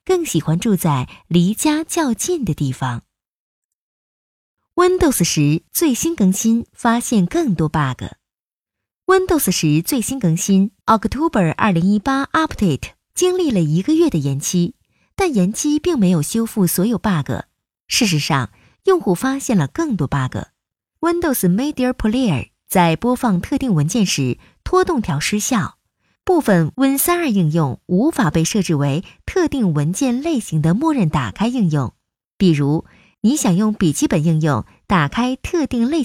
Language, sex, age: Chinese, female, 20-39